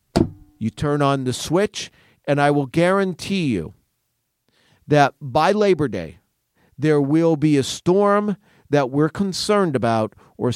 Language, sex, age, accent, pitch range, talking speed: English, male, 40-59, American, 115-155 Hz, 135 wpm